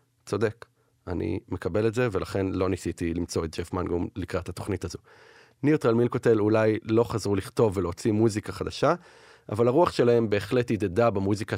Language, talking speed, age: Hebrew, 155 wpm, 30-49